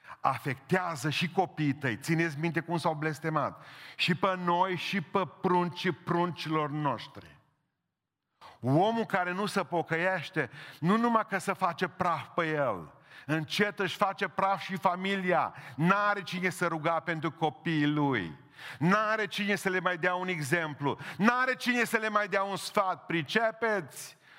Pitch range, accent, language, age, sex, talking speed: 175-230 Hz, native, Romanian, 40-59, male, 150 wpm